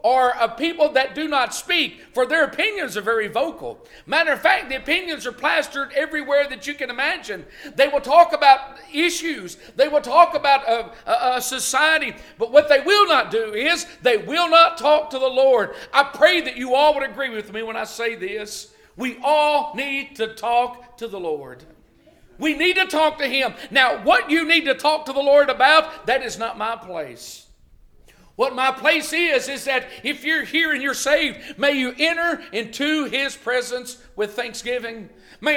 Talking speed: 195 wpm